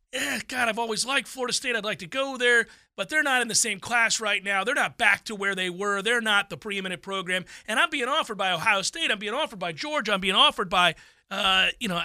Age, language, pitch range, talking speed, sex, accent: 40-59, English, 185-245 Hz, 255 wpm, male, American